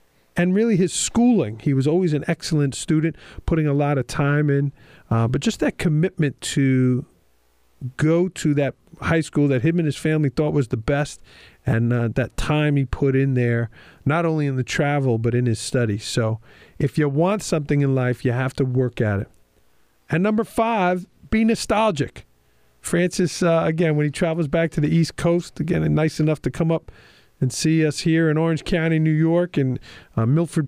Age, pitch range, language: 40-59, 130-165 Hz, English